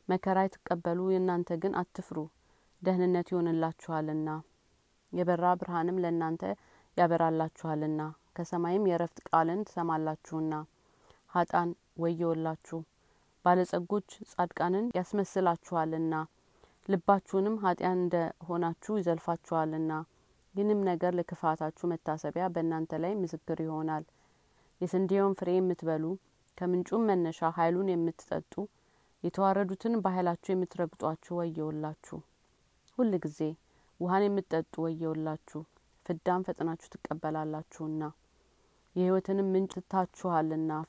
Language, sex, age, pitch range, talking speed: Amharic, female, 30-49, 160-185 Hz, 80 wpm